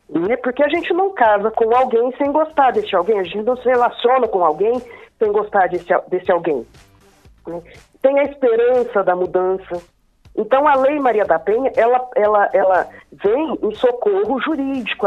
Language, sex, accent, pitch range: Portuguese, female, Brazilian, 195-285 Hz